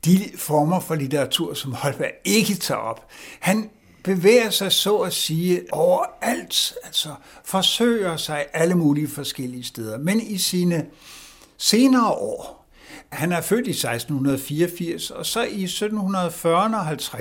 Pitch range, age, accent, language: 140-195 Hz, 60-79, native, Danish